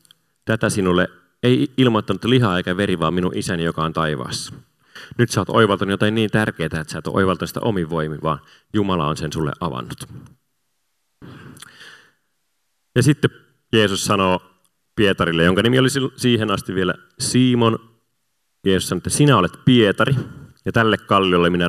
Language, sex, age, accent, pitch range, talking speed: Finnish, male, 30-49, native, 85-125 Hz, 150 wpm